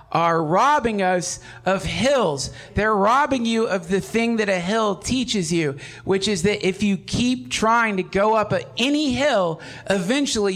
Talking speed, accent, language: 165 wpm, American, English